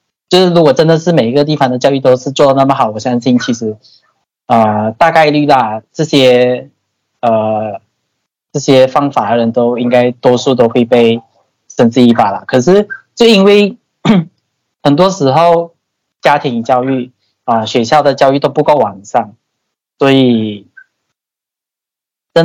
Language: Chinese